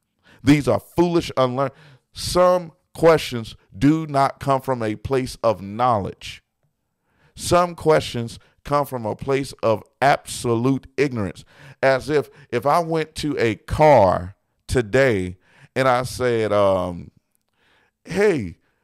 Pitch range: 130-165 Hz